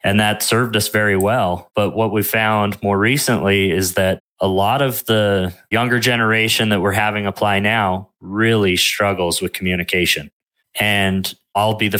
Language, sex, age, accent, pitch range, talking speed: English, male, 20-39, American, 95-110 Hz, 165 wpm